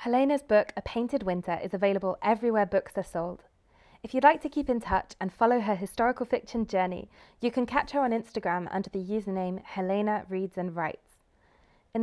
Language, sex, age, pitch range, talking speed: English, female, 20-39, 180-225 Hz, 190 wpm